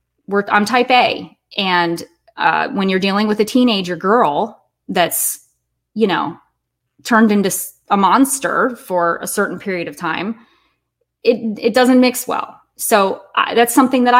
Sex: female